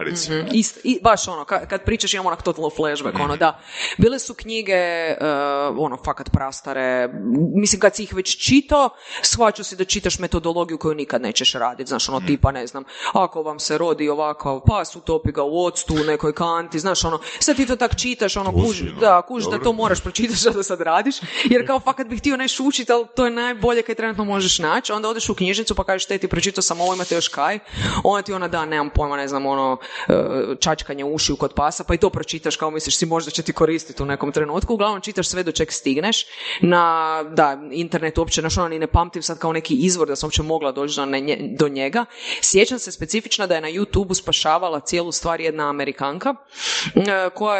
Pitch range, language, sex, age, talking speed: 155-210 Hz, Croatian, female, 30-49, 205 wpm